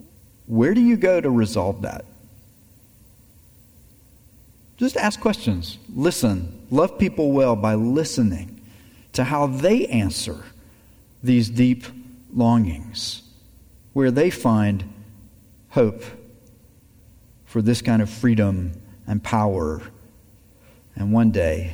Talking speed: 100 wpm